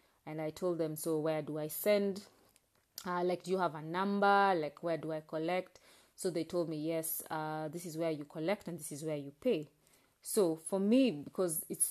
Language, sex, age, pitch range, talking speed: English, female, 30-49, 155-190 Hz, 215 wpm